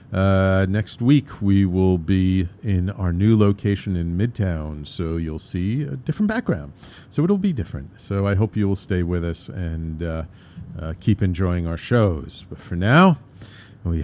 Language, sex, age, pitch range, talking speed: English, male, 50-69, 95-130 Hz, 175 wpm